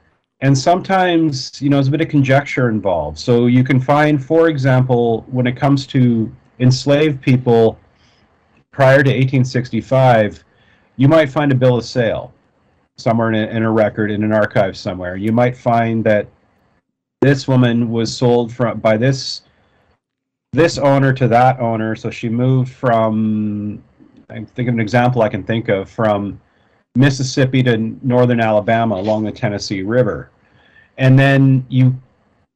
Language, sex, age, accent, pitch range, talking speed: English, male, 40-59, American, 110-130 Hz, 155 wpm